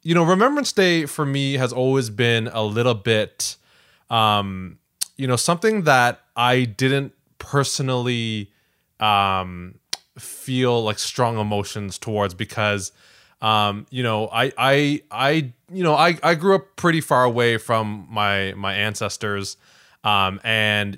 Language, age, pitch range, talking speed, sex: English, 20-39, 105-130 Hz, 135 wpm, male